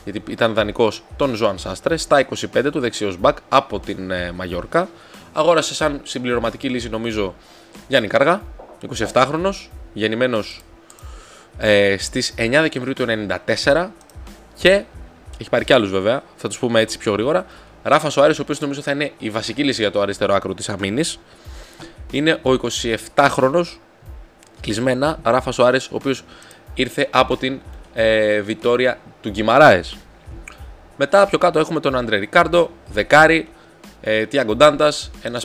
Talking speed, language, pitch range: 145 wpm, Greek, 105-145 Hz